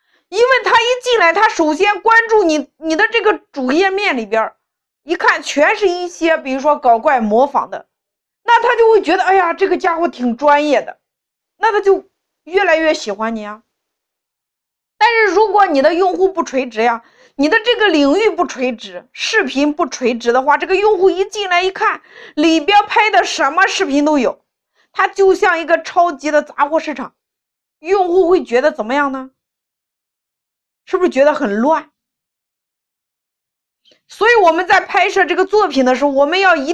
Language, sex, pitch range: Chinese, female, 270-390 Hz